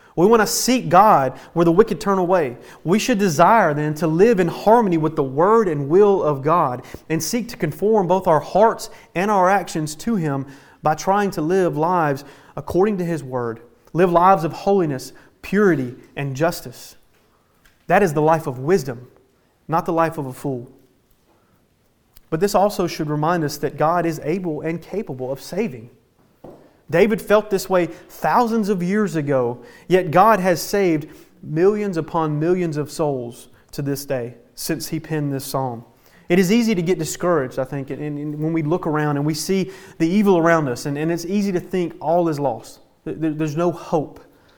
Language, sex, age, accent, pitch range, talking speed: English, male, 30-49, American, 145-190 Hz, 180 wpm